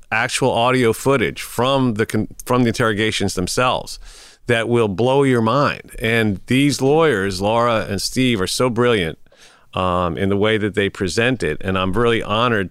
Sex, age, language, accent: male, 40-59, English, American